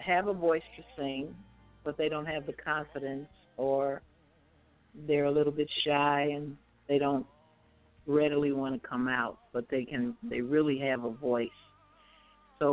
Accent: American